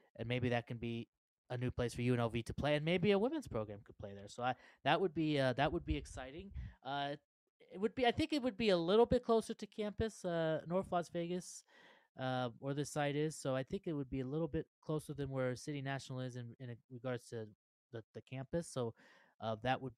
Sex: male